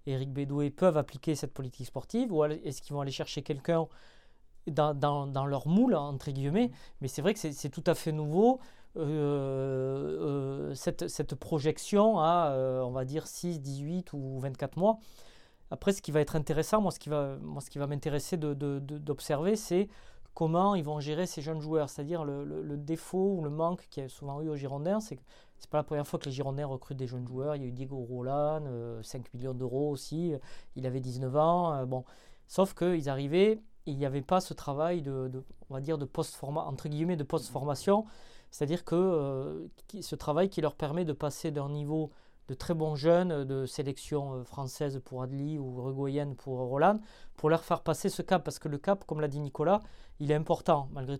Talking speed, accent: 220 wpm, French